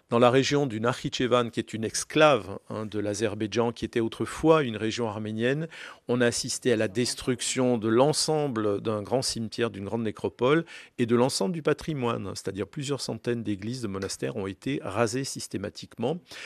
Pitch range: 105-135 Hz